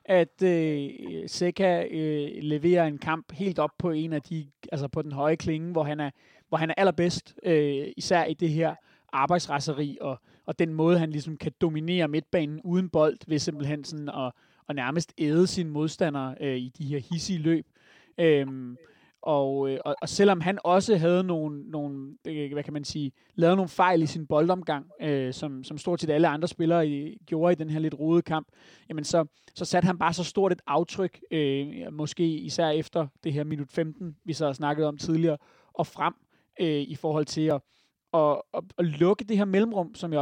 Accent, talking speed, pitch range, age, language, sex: native, 195 wpm, 145-170 Hz, 30-49, Danish, male